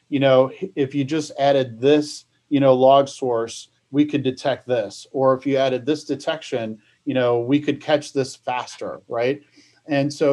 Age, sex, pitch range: 40-59, male, 120-145 Hz